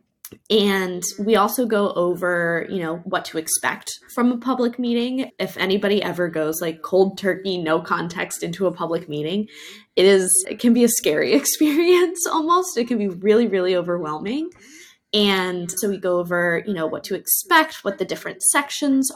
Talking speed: 170 wpm